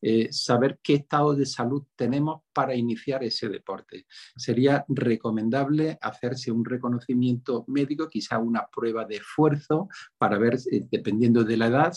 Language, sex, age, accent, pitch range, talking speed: Spanish, male, 50-69, Spanish, 115-140 Hz, 145 wpm